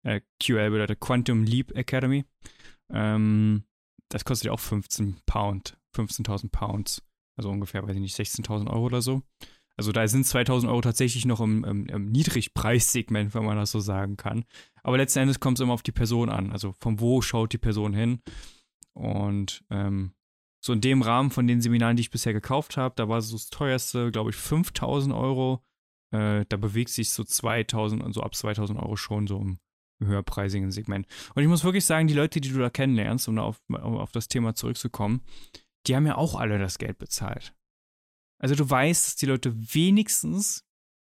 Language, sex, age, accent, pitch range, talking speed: German, male, 20-39, German, 105-130 Hz, 190 wpm